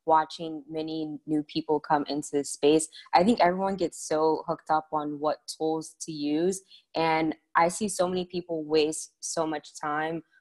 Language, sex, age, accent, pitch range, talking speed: English, female, 20-39, American, 155-175 Hz, 175 wpm